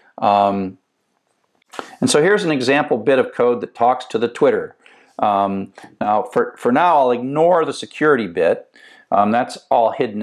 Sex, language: male, English